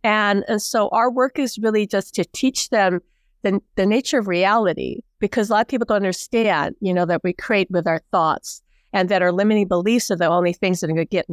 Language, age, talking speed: English, 50-69, 245 wpm